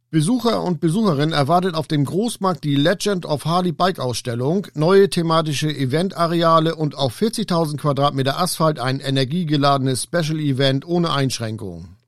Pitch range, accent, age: 135-170 Hz, German, 50-69